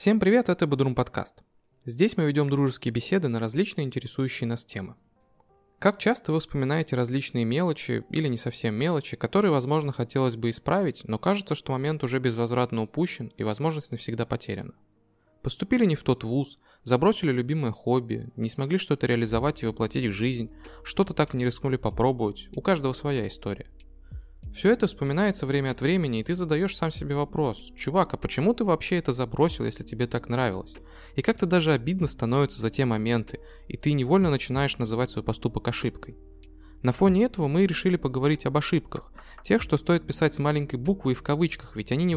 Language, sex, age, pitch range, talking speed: Russian, male, 20-39, 115-160 Hz, 180 wpm